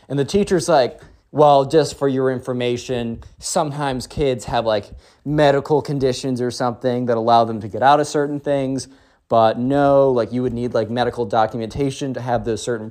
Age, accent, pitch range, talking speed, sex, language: 20-39, American, 120-155 Hz, 180 wpm, male, English